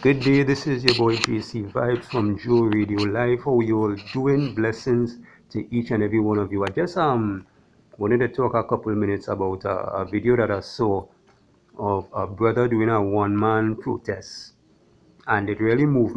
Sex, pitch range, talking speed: male, 100-120 Hz, 195 wpm